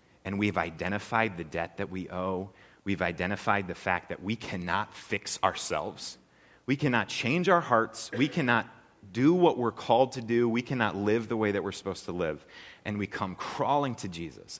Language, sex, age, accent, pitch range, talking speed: English, male, 30-49, American, 95-120 Hz, 190 wpm